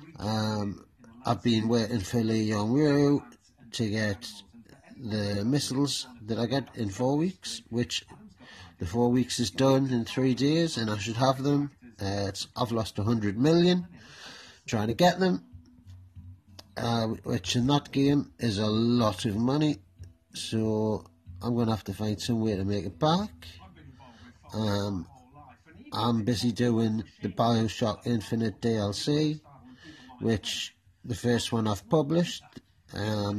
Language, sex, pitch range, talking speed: English, male, 100-125 Hz, 140 wpm